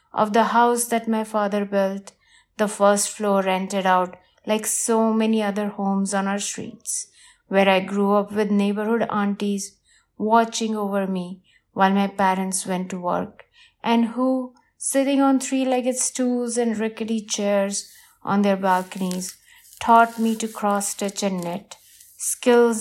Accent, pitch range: Indian, 190-220 Hz